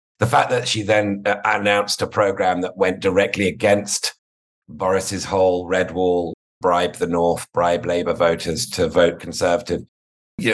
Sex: male